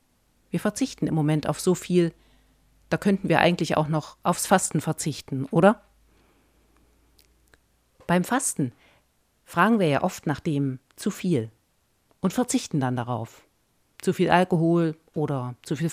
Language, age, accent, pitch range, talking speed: German, 50-69, German, 145-190 Hz, 140 wpm